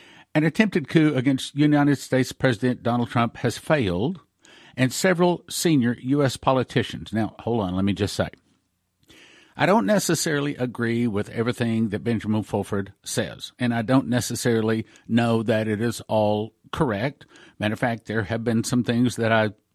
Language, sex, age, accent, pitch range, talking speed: English, male, 50-69, American, 110-140 Hz, 160 wpm